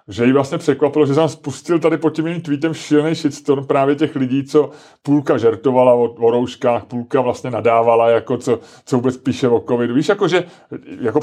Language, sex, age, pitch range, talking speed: Czech, male, 30-49, 130-155 Hz, 180 wpm